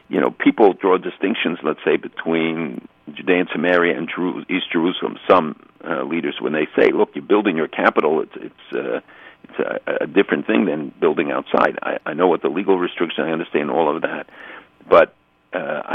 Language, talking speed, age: English, 190 wpm, 60-79